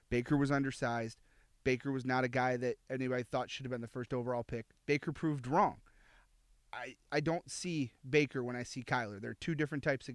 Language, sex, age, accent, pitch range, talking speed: English, male, 30-49, American, 120-150 Hz, 205 wpm